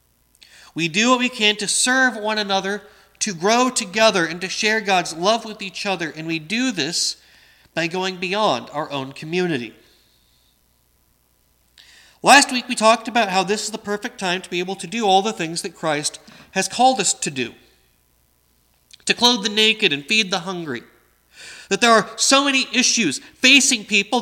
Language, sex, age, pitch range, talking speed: English, male, 40-59, 155-220 Hz, 180 wpm